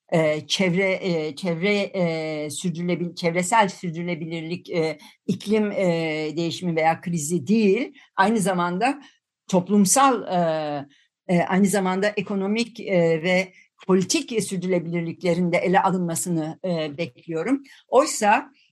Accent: native